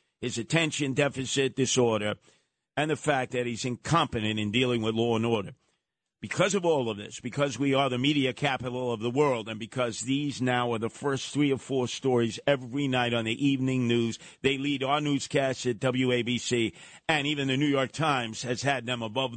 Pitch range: 110-135 Hz